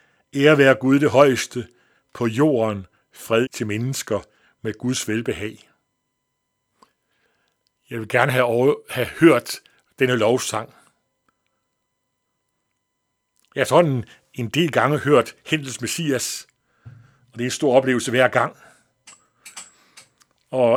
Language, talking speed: Danish, 120 wpm